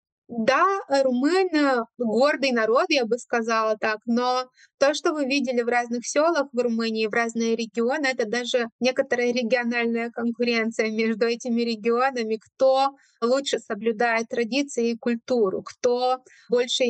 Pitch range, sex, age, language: 230-260 Hz, female, 20-39, Ukrainian